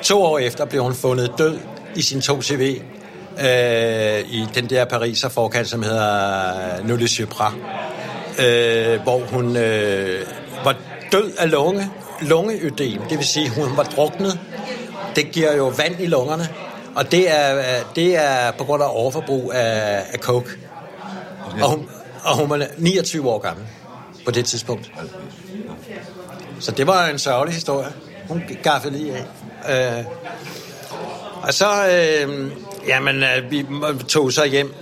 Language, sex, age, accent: Danish, male, 60-79, native